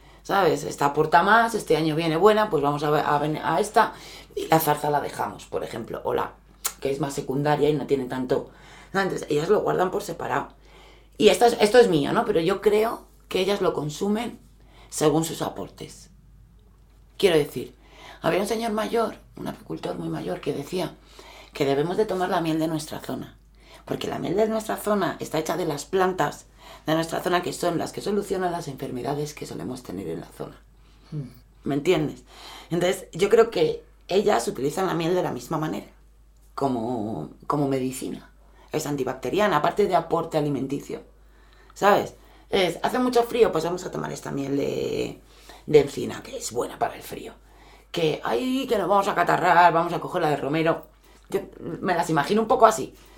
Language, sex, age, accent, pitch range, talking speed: Spanish, female, 30-49, Spanish, 145-210 Hz, 185 wpm